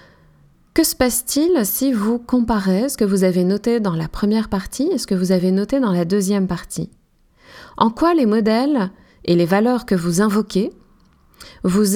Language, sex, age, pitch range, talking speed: French, female, 20-39, 190-250 Hz, 180 wpm